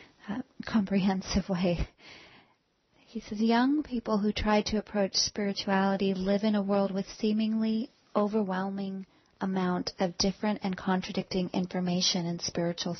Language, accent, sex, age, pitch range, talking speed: English, American, female, 30-49, 185-225 Hz, 125 wpm